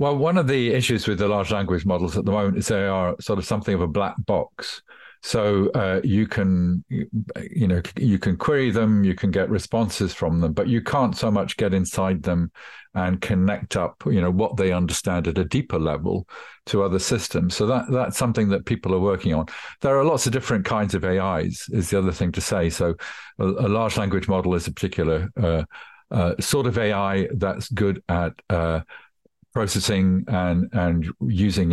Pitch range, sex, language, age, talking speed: 90-105 Hz, male, English, 50-69, 200 wpm